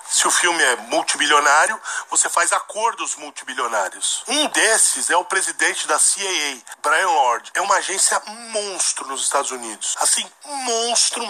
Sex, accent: male, Brazilian